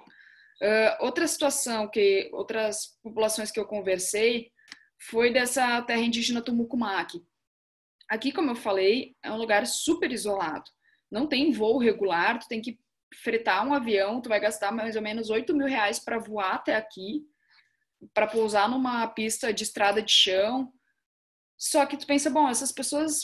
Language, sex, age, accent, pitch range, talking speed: Portuguese, female, 20-39, Brazilian, 215-280 Hz, 160 wpm